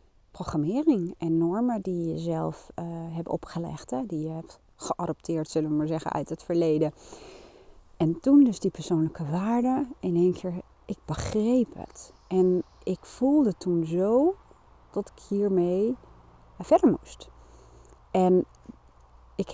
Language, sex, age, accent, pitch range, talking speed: Dutch, female, 40-59, Dutch, 165-205 Hz, 140 wpm